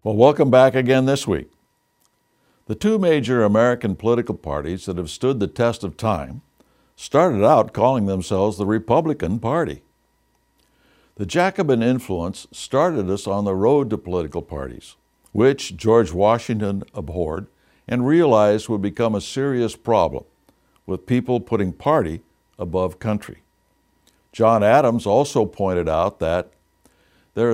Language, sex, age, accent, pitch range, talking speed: English, male, 60-79, American, 95-125 Hz, 135 wpm